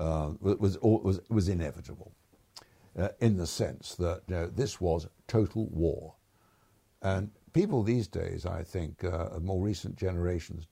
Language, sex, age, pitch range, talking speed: English, male, 60-79, 85-110 Hz, 140 wpm